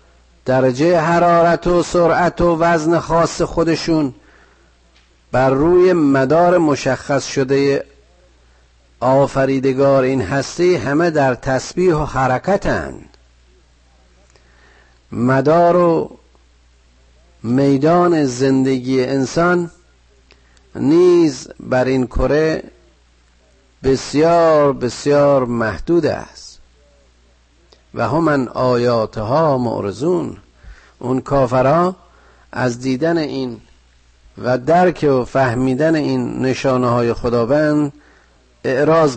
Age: 50-69